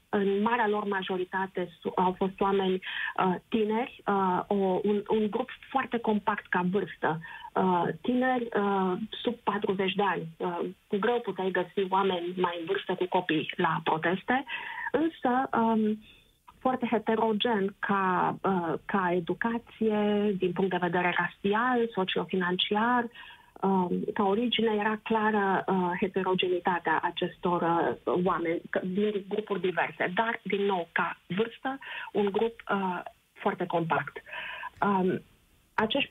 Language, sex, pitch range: Romanian, female, 180-225 Hz